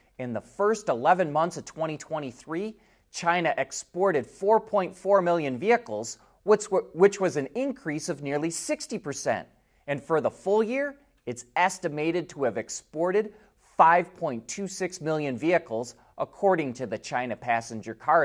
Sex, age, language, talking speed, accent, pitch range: male, 30-49, English, 125 wpm, American, 125-190 Hz